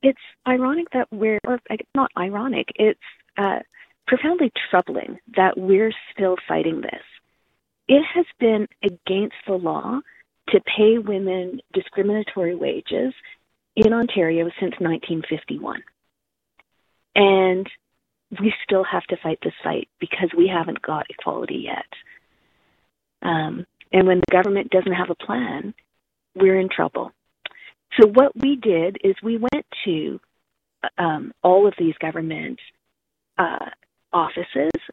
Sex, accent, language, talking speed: female, American, English, 125 wpm